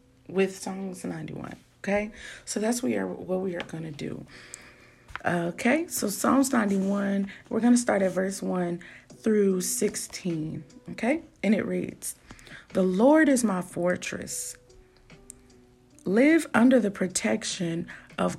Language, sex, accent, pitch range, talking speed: English, female, American, 175-225 Hz, 130 wpm